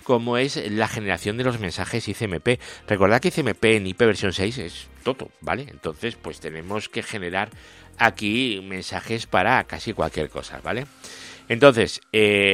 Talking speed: 145 wpm